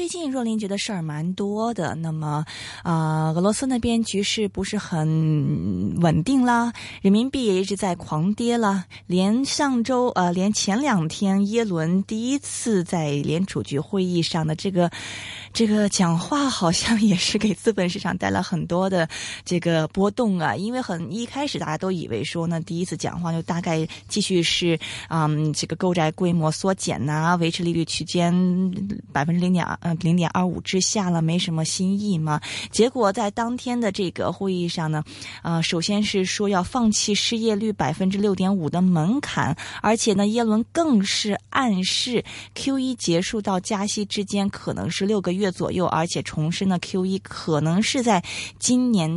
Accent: native